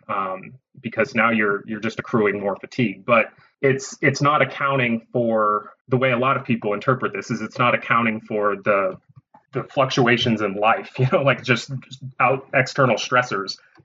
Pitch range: 110-130 Hz